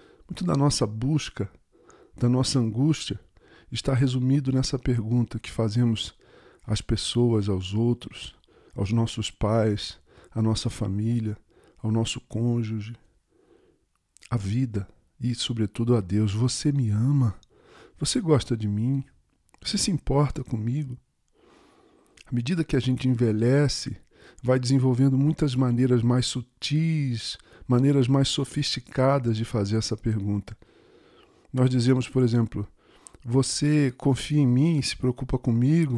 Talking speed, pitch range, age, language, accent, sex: 120 wpm, 115-135 Hz, 40-59, Portuguese, Brazilian, male